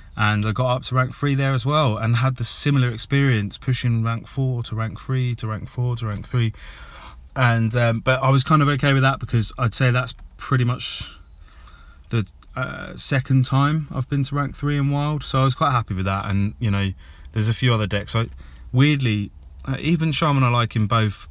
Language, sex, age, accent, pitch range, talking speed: English, male, 20-39, British, 100-125 Hz, 215 wpm